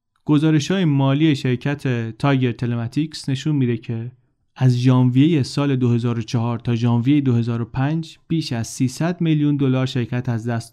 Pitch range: 120-140 Hz